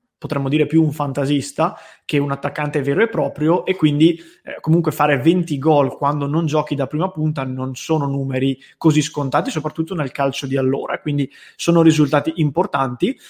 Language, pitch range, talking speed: English, 140-160 Hz, 170 wpm